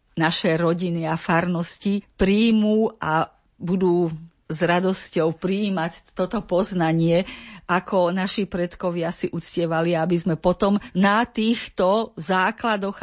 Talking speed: 105 wpm